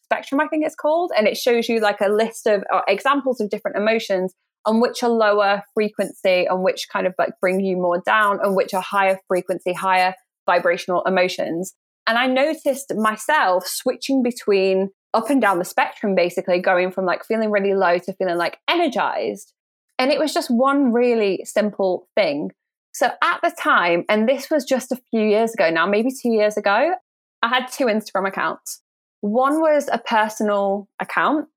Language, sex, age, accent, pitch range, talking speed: English, female, 20-39, British, 195-255 Hz, 180 wpm